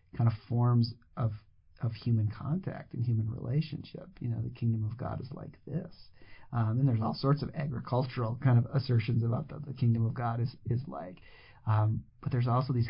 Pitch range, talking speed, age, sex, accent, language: 110-125 Hz, 200 wpm, 40-59, male, American, English